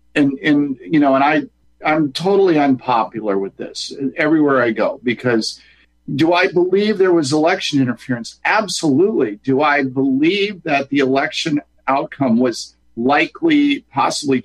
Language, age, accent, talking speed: English, 50-69, American, 135 wpm